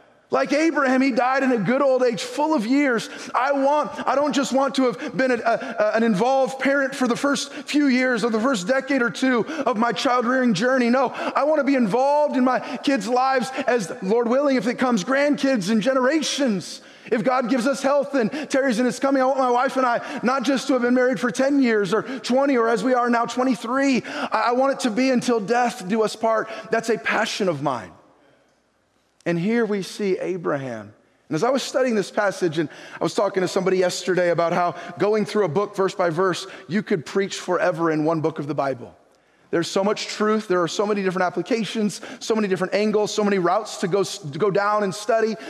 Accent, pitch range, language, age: American, 200-265 Hz, English, 20-39